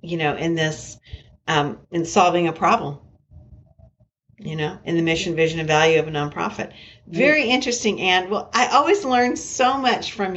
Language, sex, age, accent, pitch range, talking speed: English, female, 50-69, American, 170-210 Hz, 175 wpm